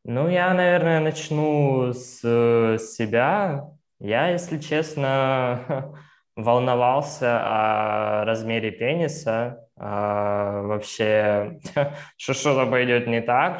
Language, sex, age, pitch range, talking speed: English, male, 20-39, 105-145 Hz, 90 wpm